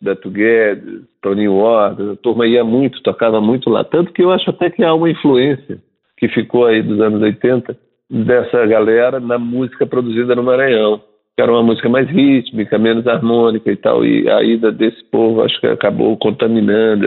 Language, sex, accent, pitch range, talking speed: Portuguese, male, Brazilian, 105-120 Hz, 185 wpm